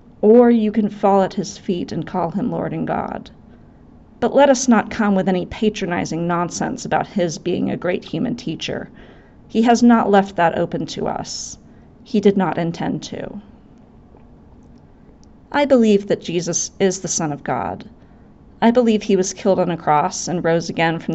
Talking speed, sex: 180 wpm, female